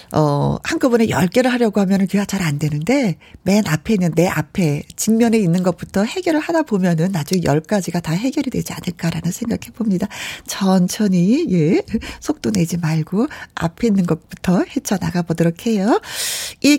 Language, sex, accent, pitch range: Korean, female, native, 180-280 Hz